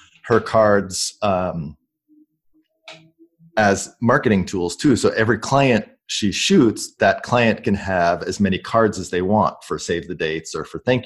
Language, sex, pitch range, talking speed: English, male, 90-110 Hz, 155 wpm